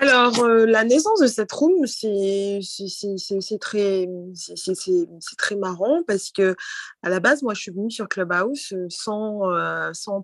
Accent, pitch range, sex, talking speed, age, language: French, 185-225 Hz, female, 140 wpm, 20-39, French